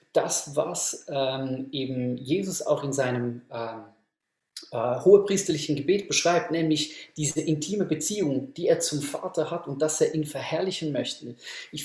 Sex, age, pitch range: male, 30-49, 145-175 Hz